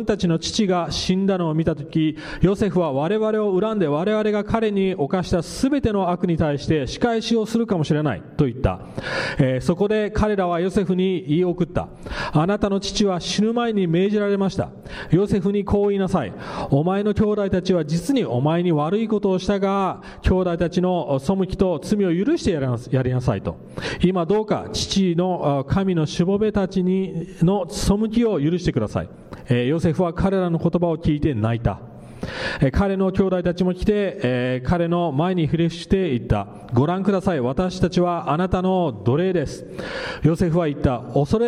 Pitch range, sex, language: 155-195 Hz, male, English